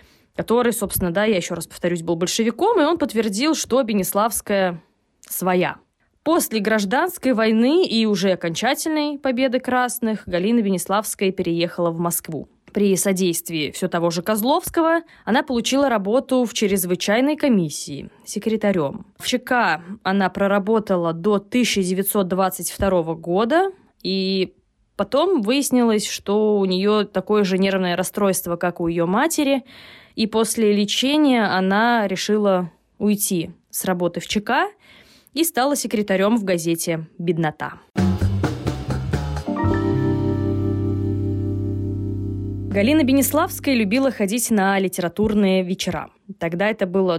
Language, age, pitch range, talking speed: Russian, 20-39, 180-240 Hz, 115 wpm